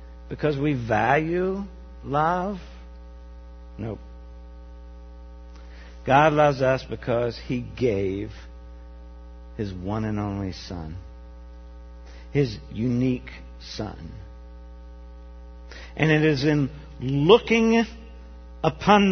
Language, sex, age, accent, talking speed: English, male, 50-69, American, 80 wpm